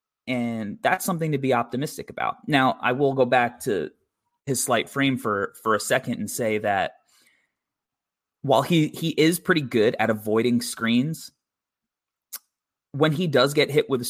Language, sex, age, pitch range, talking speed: English, male, 20-39, 115-140 Hz, 165 wpm